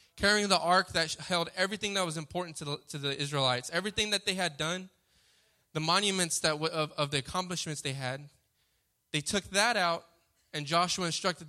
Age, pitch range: 10-29, 150-185 Hz